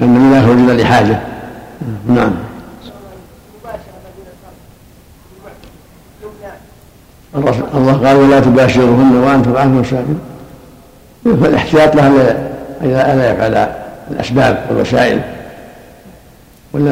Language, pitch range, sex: Arabic, 120-145 Hz, male